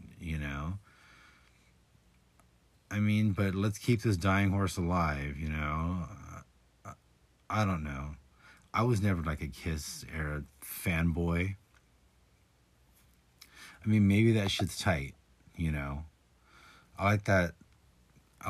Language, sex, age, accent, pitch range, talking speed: English, male, 30-49, American, 75-95 Hz, 115 wpm